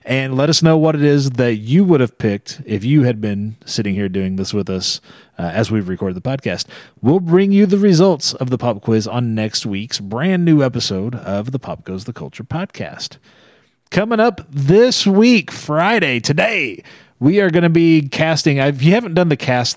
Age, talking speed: 30-49, 205 wpm